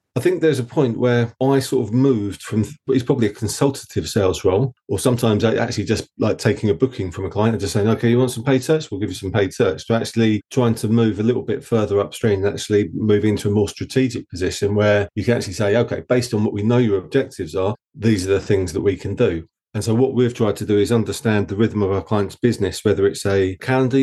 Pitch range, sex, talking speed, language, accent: 100-120 Hz, male, 255 wpm, English, British